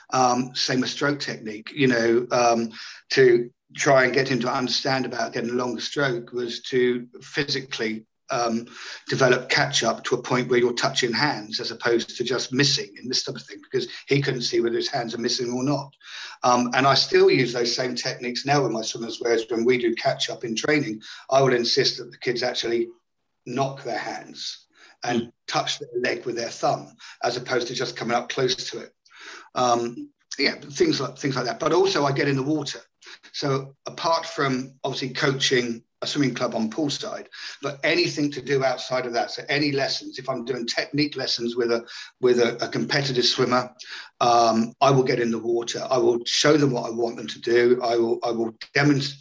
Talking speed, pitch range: 205 wpm, 120-145 Hz